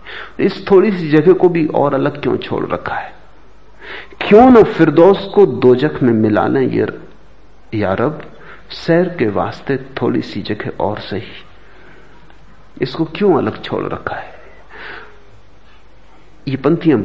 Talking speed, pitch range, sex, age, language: 135 wpm, 120-175 Hz, male, 50-69, Hindi